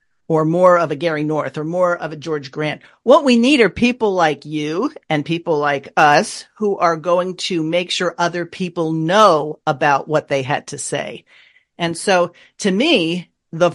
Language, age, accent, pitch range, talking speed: English, 50-69, American, 160-205 Hz, 190 wpm